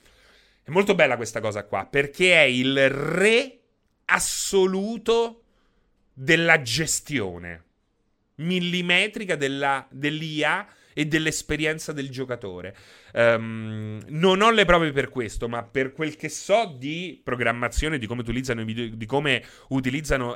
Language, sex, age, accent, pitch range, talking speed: Italian, male, 30-49, native, 120-180 Hz, 125 wpm